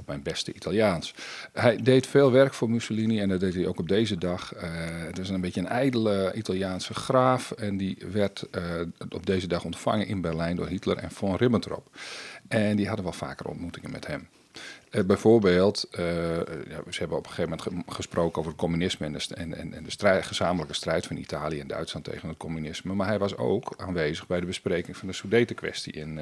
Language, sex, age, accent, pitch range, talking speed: Dutch, male, 50-69, Dutch, 90-105 Hz, 215 wpm